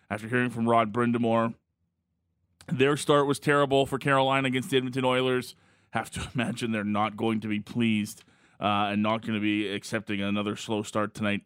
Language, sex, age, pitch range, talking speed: English, male, 20-39, 110-135 Hz, 185 wpm